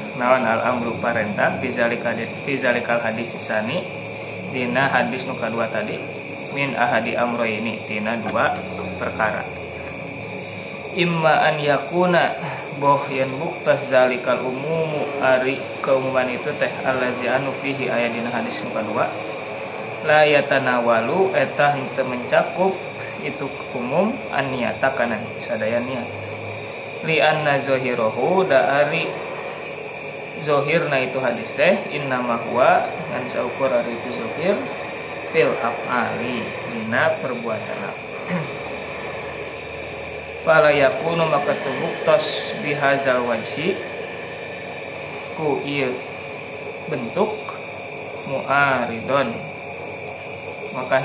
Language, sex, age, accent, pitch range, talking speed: Indonesian, male, 20-39, native, 115-145 Hz, 75 wpm